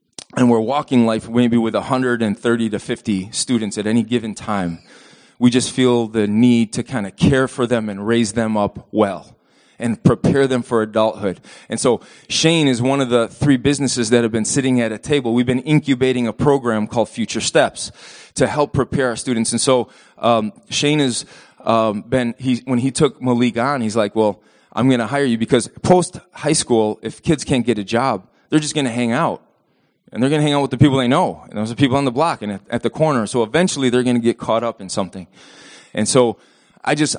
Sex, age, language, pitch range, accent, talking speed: male, 20-39, English, 115-135 Hz, American, 220 wpm